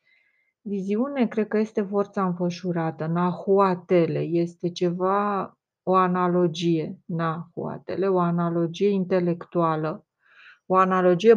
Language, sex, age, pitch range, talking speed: Romanian, female, 30-49, 170-200 Hz, 90 wpm